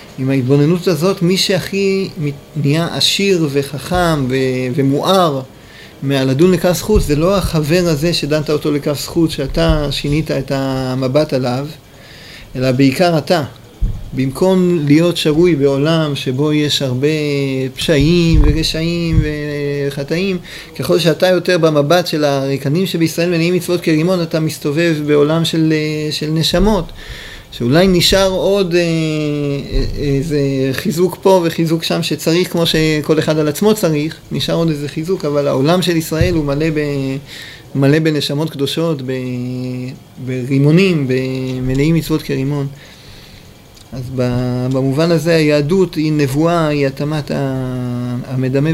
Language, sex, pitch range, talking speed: Hebrew, male, 140-170 Hz, 120 wpm